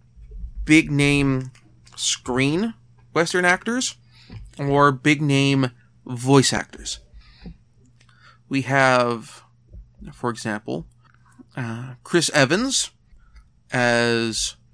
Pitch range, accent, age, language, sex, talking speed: 115-135 Hz, American, 30-49, English, male, 65 wpm